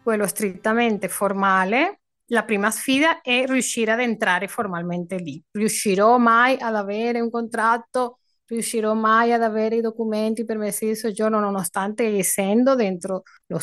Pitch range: 180-230 Hz